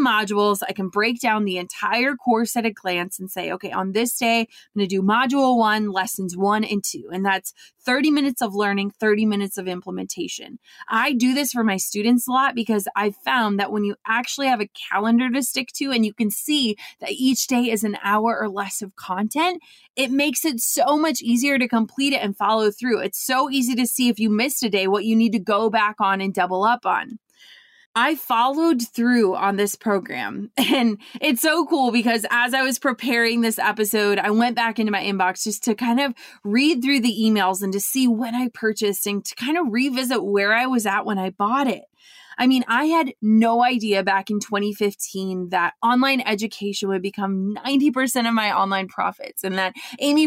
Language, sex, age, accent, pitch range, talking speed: English, female, 20-39, American, 205-255 Hz, 210 wpm